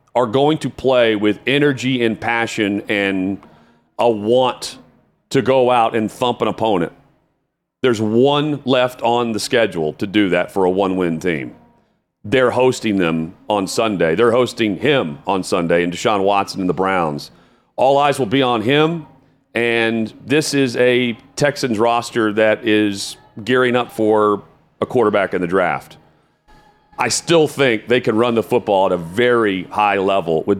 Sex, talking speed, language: male, 165 wpm, English